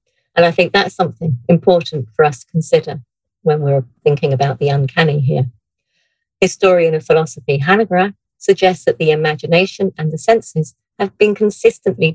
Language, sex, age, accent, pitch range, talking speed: English, female, 50-69, British, 140-170 Hz, 155 wpm